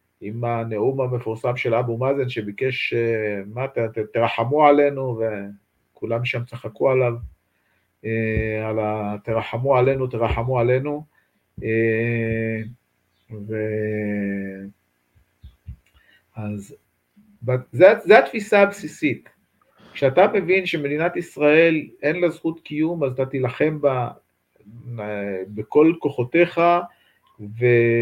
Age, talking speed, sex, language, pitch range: 50-69, 90 wpm, male, English, 115-165 Hz